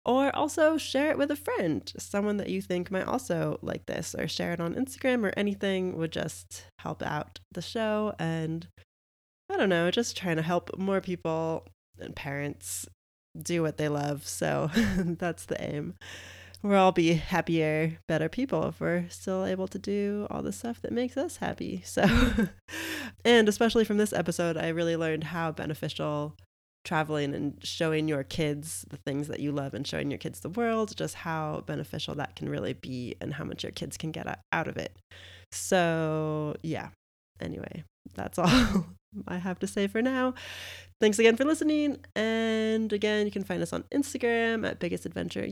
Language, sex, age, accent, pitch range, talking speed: English, female, 20-39, American, 145-220 Hz, 180 wpm